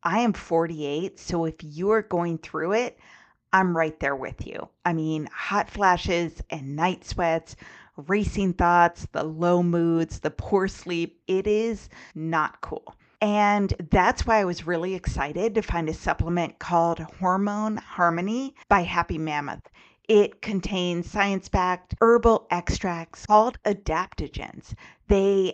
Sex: female